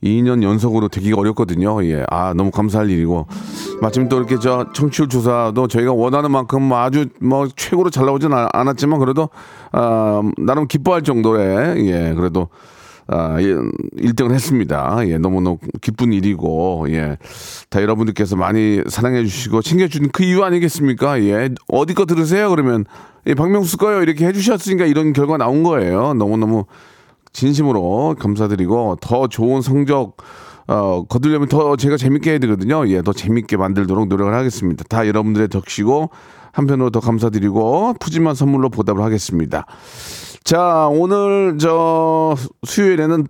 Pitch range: 105-150 Hz